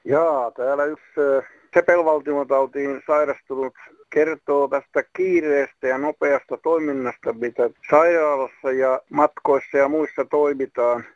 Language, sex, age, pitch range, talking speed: Finnish, male, 60-79, 135-160 Hz, 100 wpm